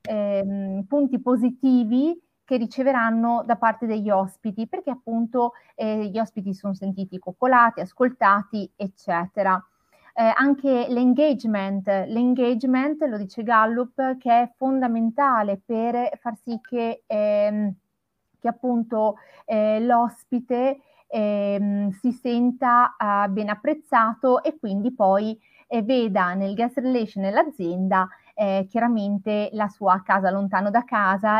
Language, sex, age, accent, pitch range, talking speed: Italian, female, 30-49, native, 200-245 Hz, 115 wpm